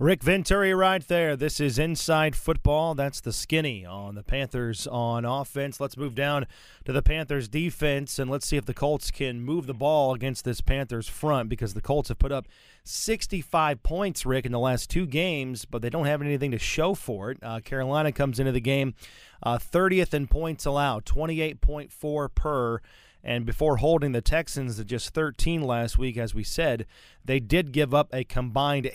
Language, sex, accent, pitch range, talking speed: English, male, American, 125-150 Hz, 190 wpm